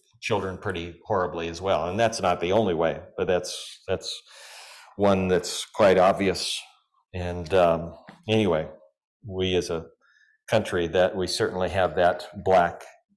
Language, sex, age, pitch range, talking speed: English, male, 40-59, 105-145 Hz, 140 wpm